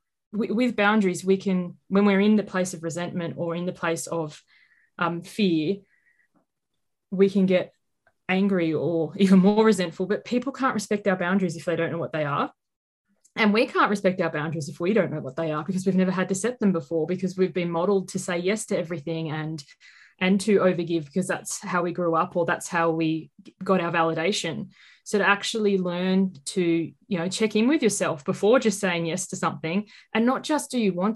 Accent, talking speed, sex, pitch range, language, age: Australian, 210 wpm, female, 175-210 Hz, English, 20-39